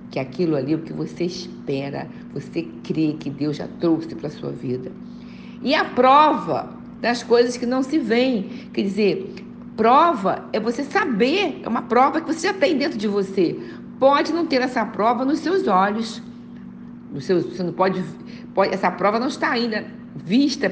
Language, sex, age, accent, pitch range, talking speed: Portuguese, female, 50-69, Brazilian, 150-235 Hz, 180 wpm